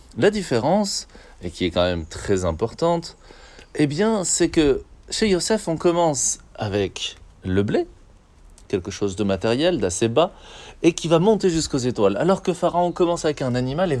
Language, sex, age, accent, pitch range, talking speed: French, male, 30-49, French, 105-150 Hz, 170 wpm